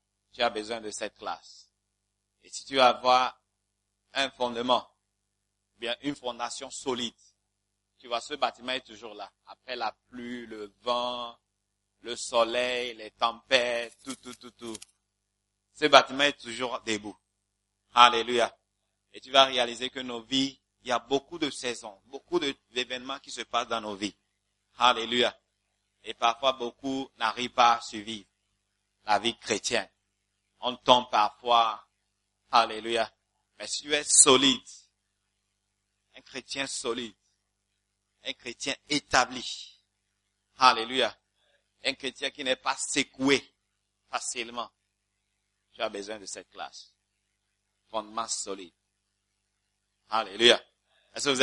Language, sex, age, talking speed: English, male, 50-69, 130 wpm